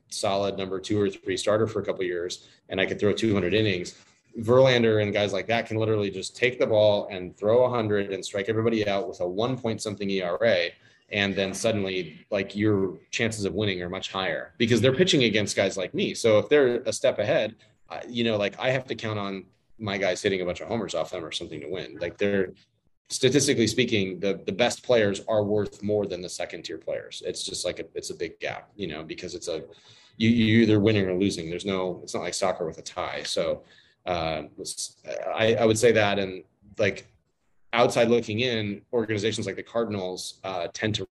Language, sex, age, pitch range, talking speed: English, male, 30-49, 95-115 Hz, 215 wpm